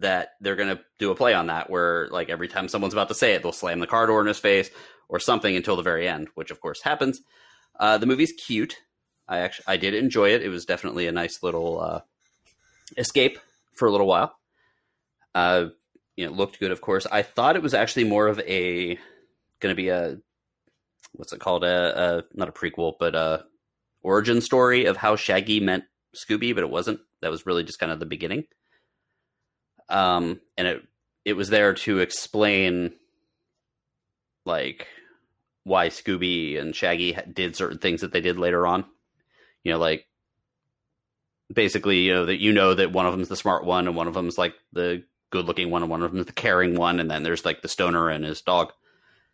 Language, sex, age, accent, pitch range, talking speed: English, male, 30-49, American, 85-105 Hz, 210 wpm